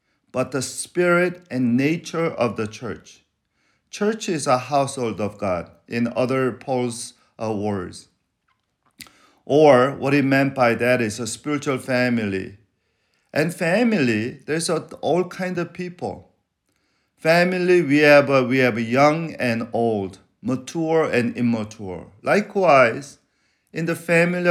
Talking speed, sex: 120 wpm, male